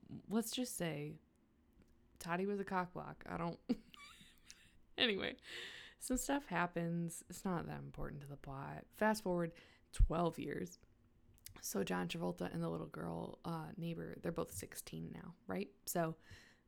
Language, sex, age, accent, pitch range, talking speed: English, female, 20-39, American, 120-190 Hz, 145 wpm